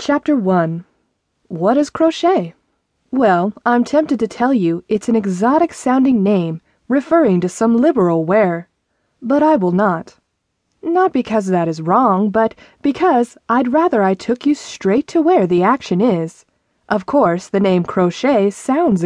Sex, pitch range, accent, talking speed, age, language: female, 185-290 Hz, American, 150 wpm, 30-49, English